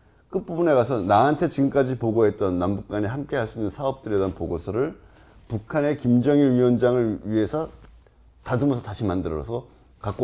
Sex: male